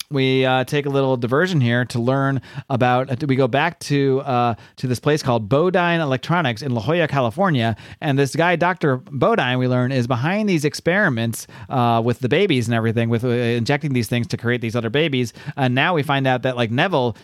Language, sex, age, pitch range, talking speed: English, male, 30-49, 115-145 Hz, 210 wpm